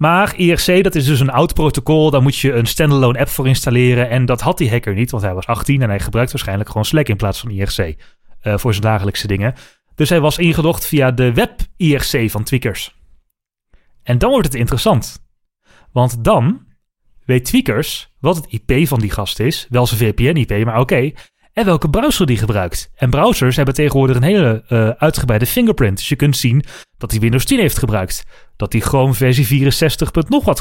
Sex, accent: male, Dutch